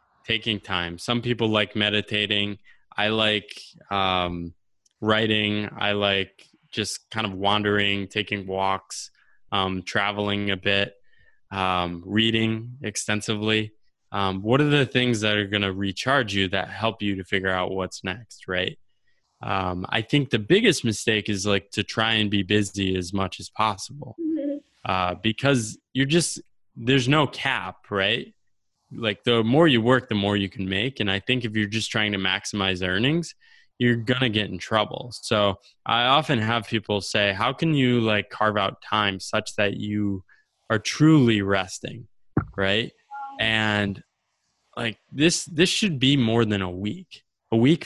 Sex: male